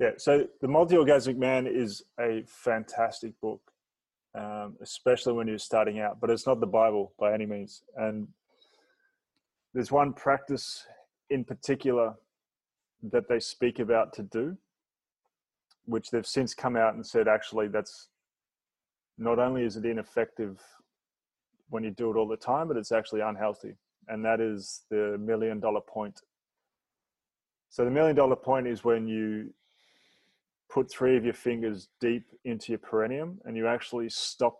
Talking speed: 150 wpm